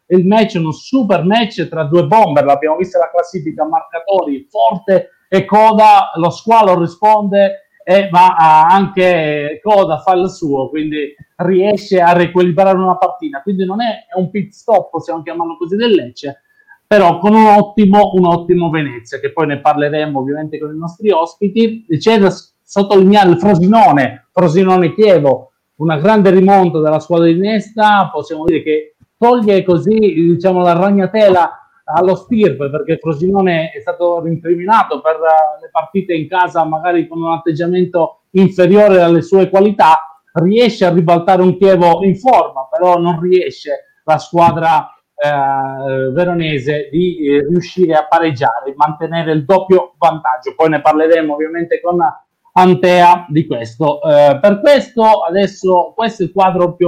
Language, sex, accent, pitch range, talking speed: Italian, male, native, 160-200 Hz, 150 wpm